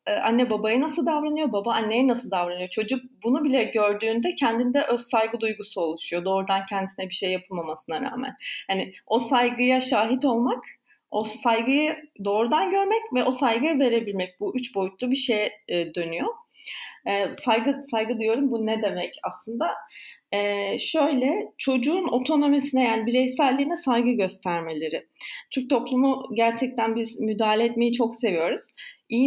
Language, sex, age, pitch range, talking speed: Turkish, female, 30-49, 205-260 Hz, 135 wpm